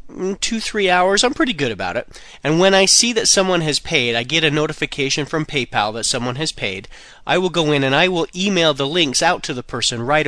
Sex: male